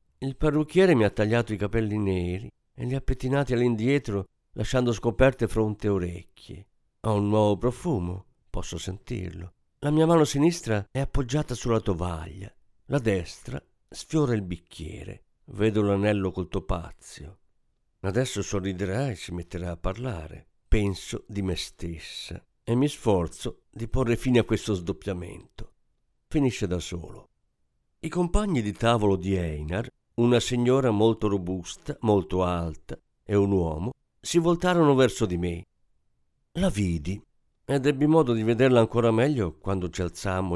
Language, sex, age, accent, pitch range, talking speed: Italian, male, 50-69, native, 90-130 Hz, 140 wpm